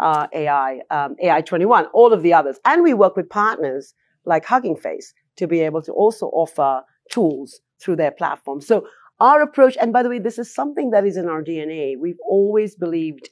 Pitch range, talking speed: 150-225 Hz, 205 wpm